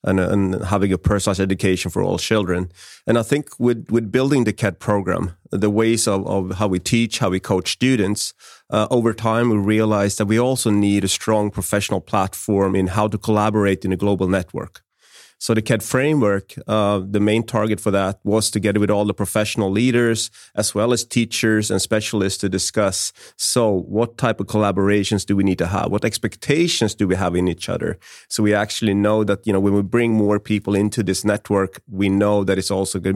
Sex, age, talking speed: male, 30-49, 210 wpm